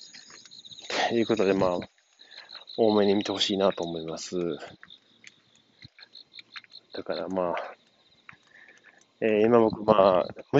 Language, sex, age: Japanese, male, 20-39